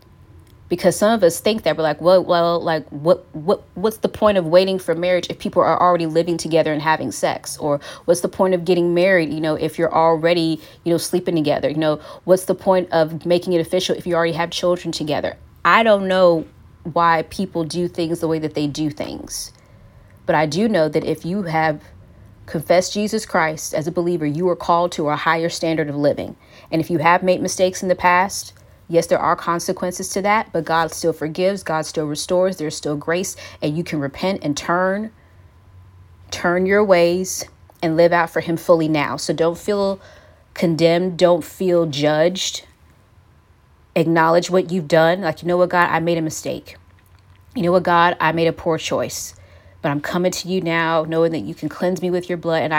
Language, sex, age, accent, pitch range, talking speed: English, female, 30-49, American, 155-180 Hz, 205 wpm